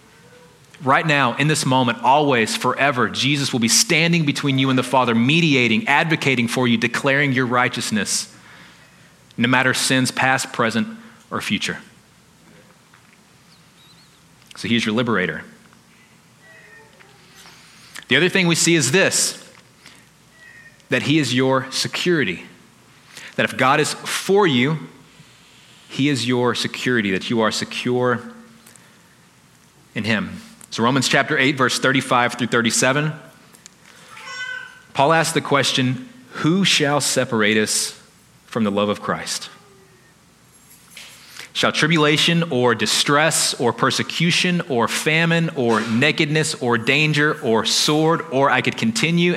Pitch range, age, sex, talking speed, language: 125-160 Hz, 30-49, male, 125 wpm, English